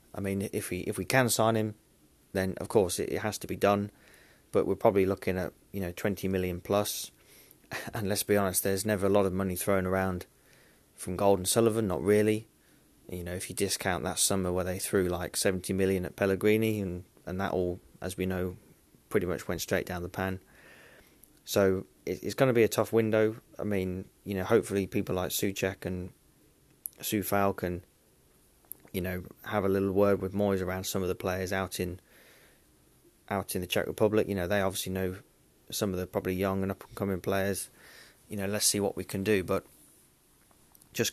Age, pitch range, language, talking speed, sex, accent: 20-39, 95-105 Hz, English, 200 wpm, male, British